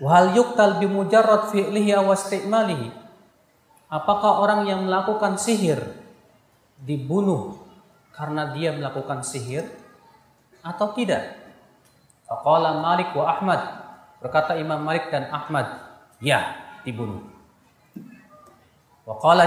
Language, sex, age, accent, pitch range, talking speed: Indonesian, male, 30-49, native, 140-205 Hz, 75 wpm